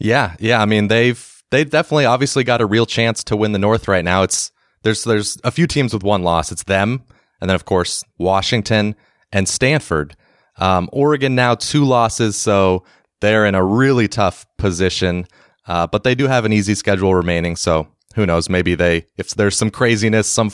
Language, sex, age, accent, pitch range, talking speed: English, male, 30-49, American, 95-115 Hz, 195 wpm